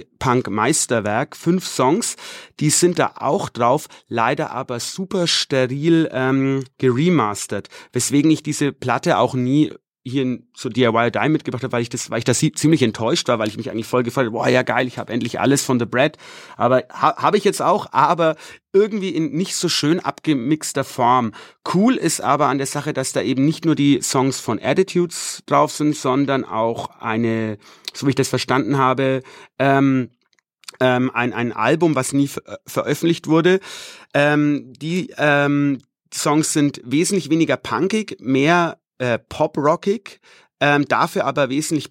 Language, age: English, 30-49